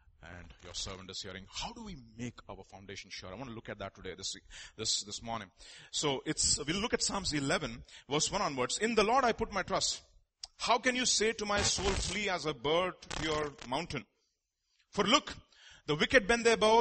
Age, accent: 30-49, Indian